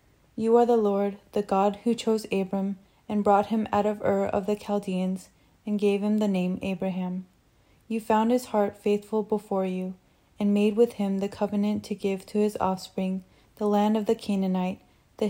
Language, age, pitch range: English, 20-39, 195-215 Hz